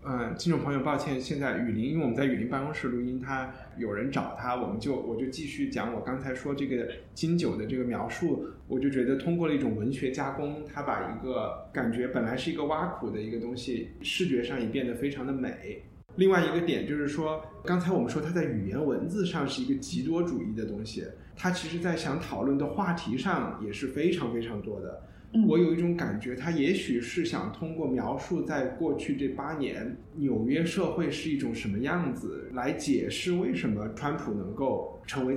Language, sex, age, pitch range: Chinese, male, 20-39, 125-165 Hz